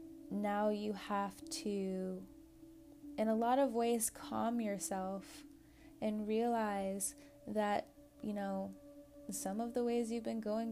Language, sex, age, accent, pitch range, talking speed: English, female, 20-39, American, 195-285 Hz, 130 wpm